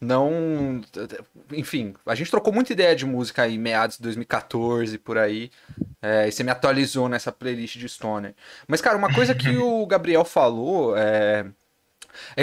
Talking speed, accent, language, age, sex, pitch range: 165 wpm, Brazilian, Portuguese, 20-39, male, 120-200 Hz